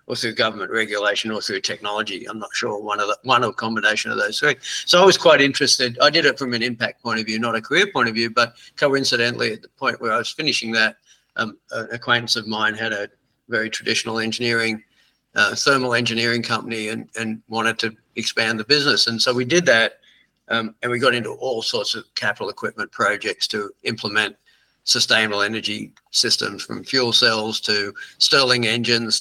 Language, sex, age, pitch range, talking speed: English, male, 50-69, 110-125 Hz, 200 wpm